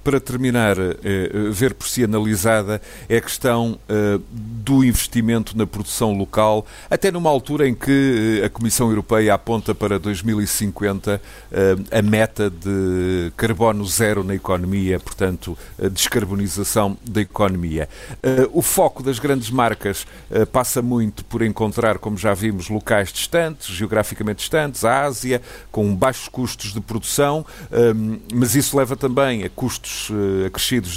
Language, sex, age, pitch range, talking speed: Portuguese, male, 50-69, 105-125 Hz, 130 wpm